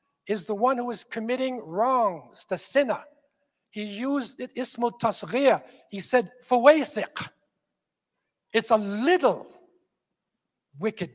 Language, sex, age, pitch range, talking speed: English, male, 60-79, 205-255 Hz, 115 wpm